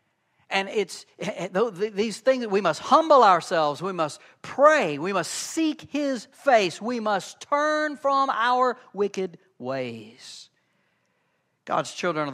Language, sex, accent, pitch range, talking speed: English, male, American, 145-195 Hz, 125 wpm